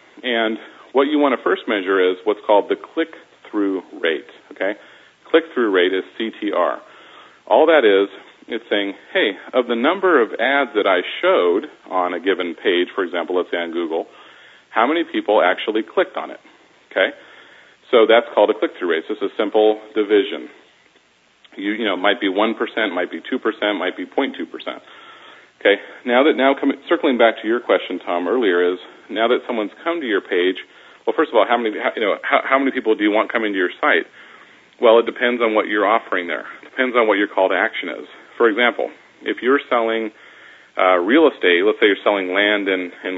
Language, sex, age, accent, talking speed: English, male, 40-59, American, 205 wpm